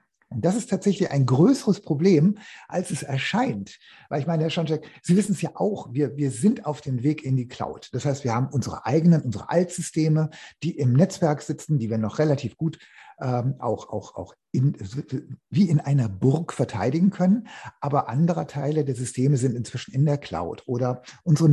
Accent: German